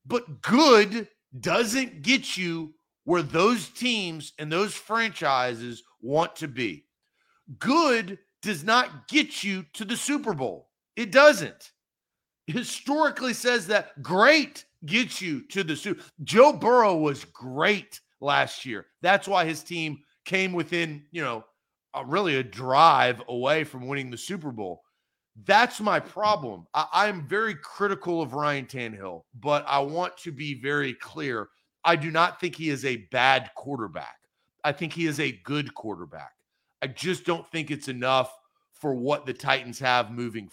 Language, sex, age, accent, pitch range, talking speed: English, male, 40-59, American, 140-200 Hz, 150 wpm